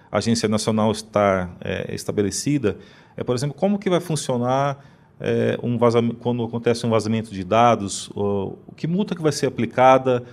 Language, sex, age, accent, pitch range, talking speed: Portuguese, male, 40-59, Brazilian, 110-145 Hz, 170 wpm